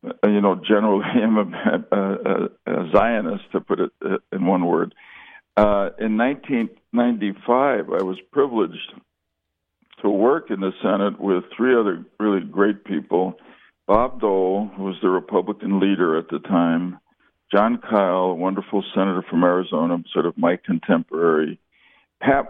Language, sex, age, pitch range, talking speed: English, male, 60-79, 95-115 Hz, 140 wpm